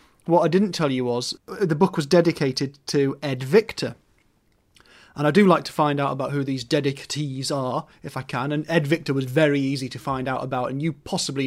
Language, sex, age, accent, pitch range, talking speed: English, male, 30-49, British, 140-170 Hz, 215 wpm